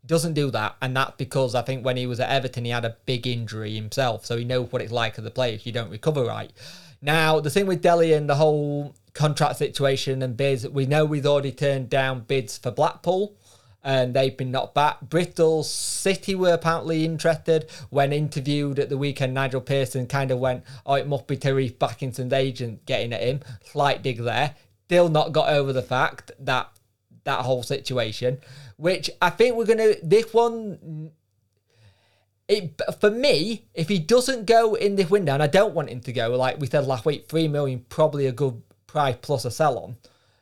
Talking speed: 205 wpm